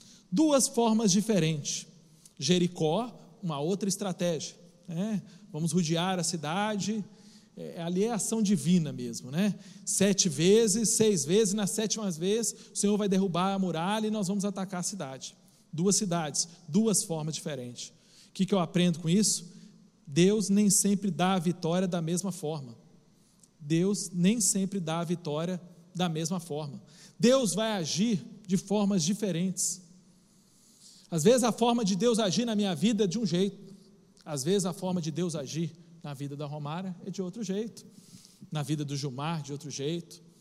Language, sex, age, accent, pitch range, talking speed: Portuguese, male, 40-59, Brazilian, 175-210 Hz, 165 wpm